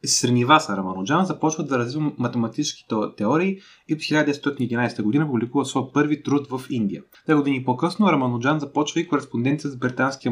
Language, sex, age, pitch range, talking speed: Bulgarian, male, 20-39, 120-155 Hz, 150 wpm